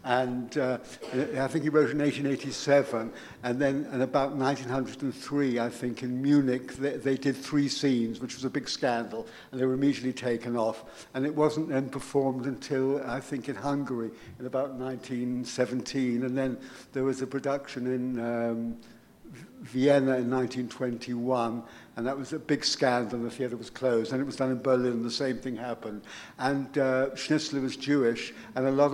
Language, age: English, 60-79